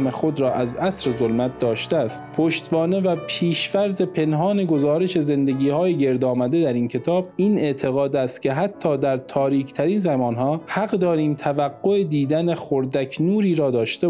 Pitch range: 130-170 Hz